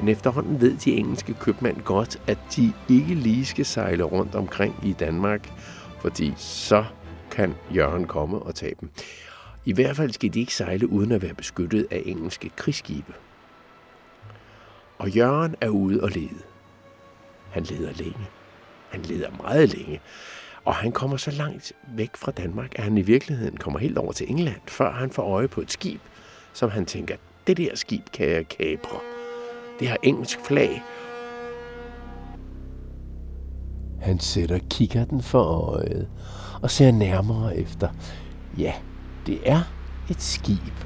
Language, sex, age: Danish, male, 60-79